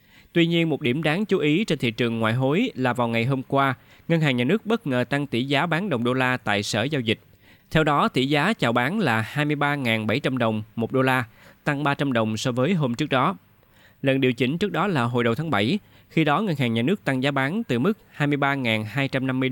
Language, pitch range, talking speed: Vietnamese, 115-150 Hz, 235 wpm